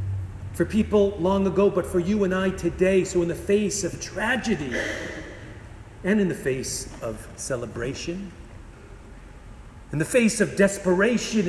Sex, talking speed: male, 140 wpm